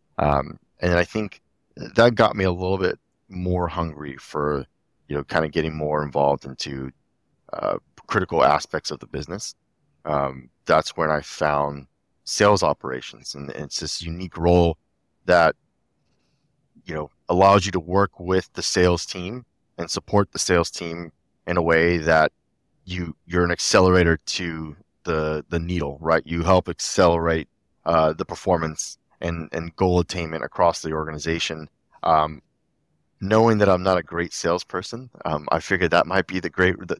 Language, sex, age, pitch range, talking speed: English, male, 30-49, 75-90 Hz, 160 wpm